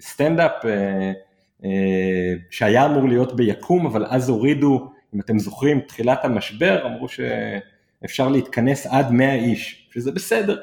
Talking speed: 130 wpm